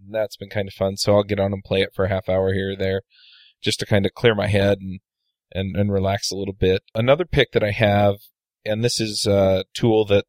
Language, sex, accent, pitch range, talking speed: English, male, American, 100-115 Hz, 260 wpm